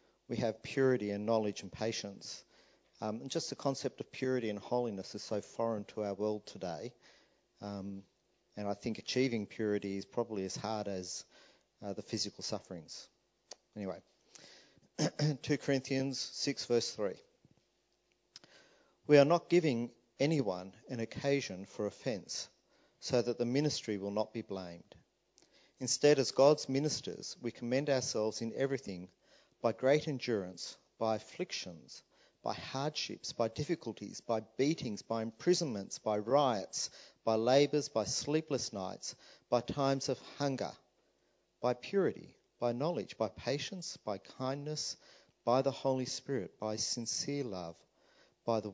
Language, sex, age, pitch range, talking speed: English, male, 50-69, 105-135 Hz, 135 wpm